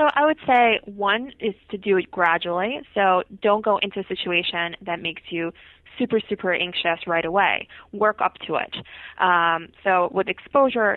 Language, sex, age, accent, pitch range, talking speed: English, female, 20-39, American, 180-220 Hz, 175 wpm